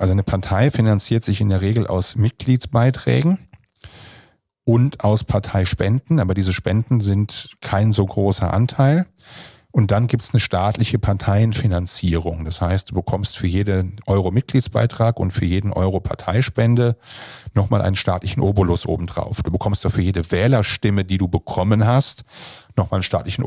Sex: male